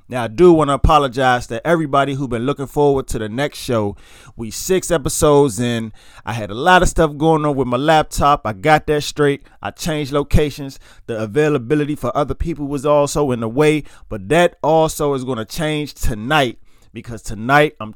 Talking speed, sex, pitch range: 195 wpm, male, 115-155 Hz